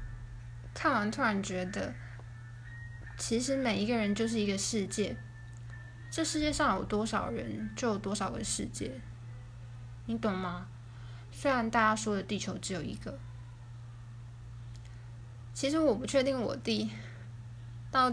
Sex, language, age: female, Chinese, 10-29